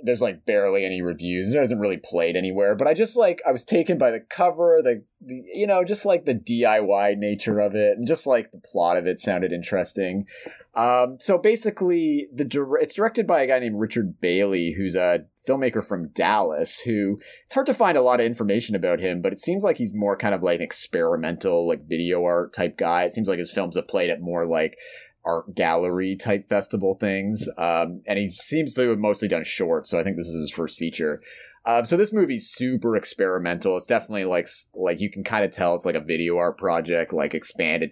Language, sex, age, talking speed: English, male, 30-49, 220 wpm